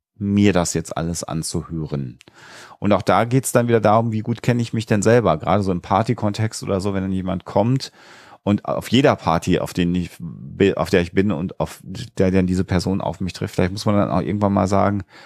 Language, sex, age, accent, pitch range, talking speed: German, male, 40-59, German, 90-105 Hz, 225 wpm